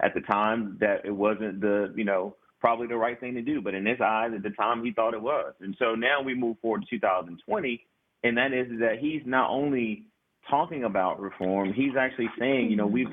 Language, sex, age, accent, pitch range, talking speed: English, male, 30-49, American, 100-125 Hz, 230 wpm